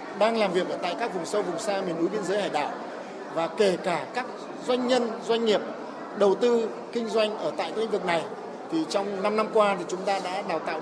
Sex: male